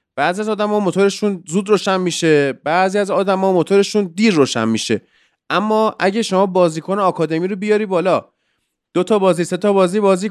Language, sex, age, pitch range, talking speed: Persian, male, 30-49, 150-210 Hz, 170 wpm